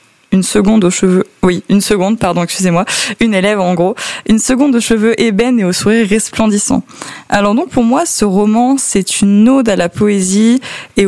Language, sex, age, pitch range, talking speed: French, female, 20-39, 180-225 Hz, 190 wpm